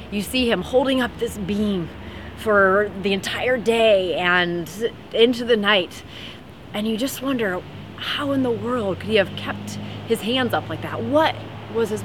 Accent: American